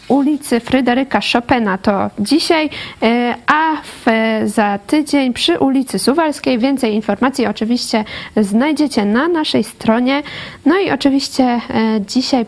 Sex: female